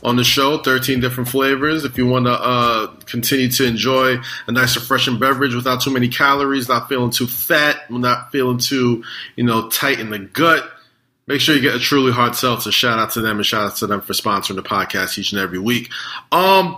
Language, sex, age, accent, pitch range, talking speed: English, male, 20-39, American, 115-140 Hz, 220 wpm